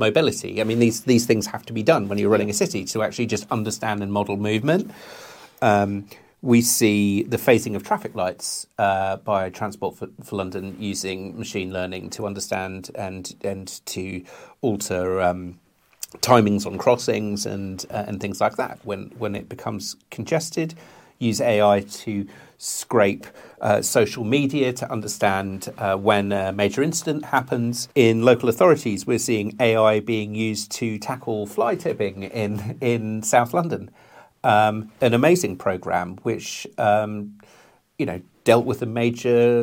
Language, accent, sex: English, British, male